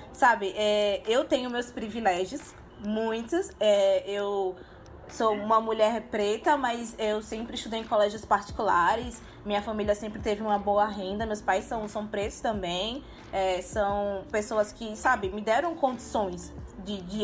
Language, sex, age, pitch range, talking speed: Portuguese, female, 20-39, 205-275 Hz, 140 wpm